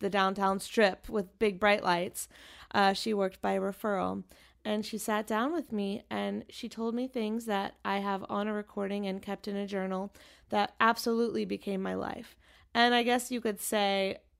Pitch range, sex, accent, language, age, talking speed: 185-215 Hz, female, American, English, 20-39, 190 wpm